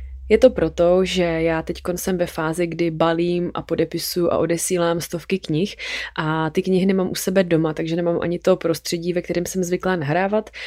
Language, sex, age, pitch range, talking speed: Czech, female, 20-39, 170-190 Hz, 190 wpm